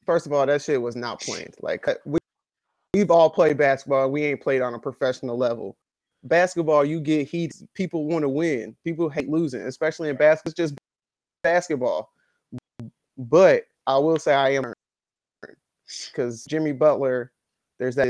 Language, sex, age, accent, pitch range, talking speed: English, male, 20-39, American, 135-165 Hz, 165 wpm